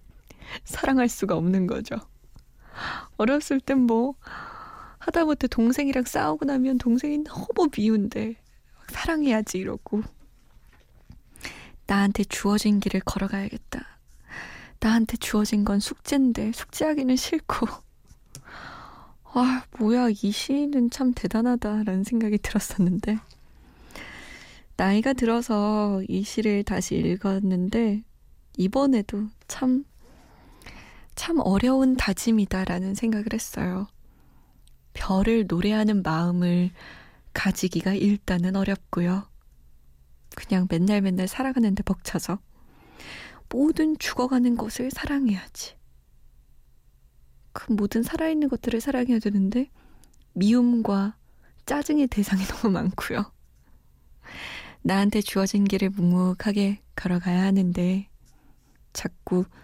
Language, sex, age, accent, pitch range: Korean, female, 20-39, native, 185-245 Hz